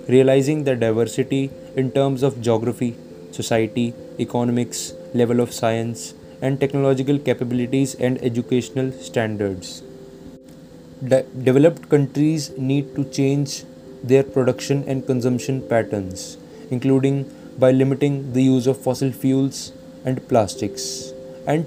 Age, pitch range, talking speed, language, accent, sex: 20-39, 120-135 Hz, 110 wpm, Dutch, Indian, male